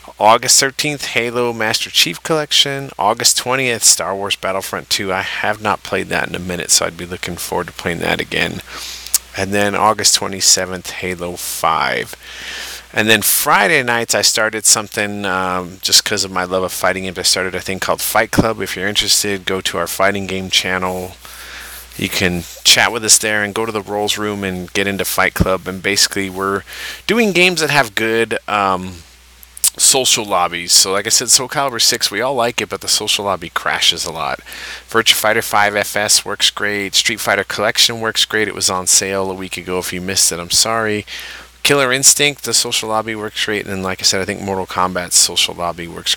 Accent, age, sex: American, 30-49, male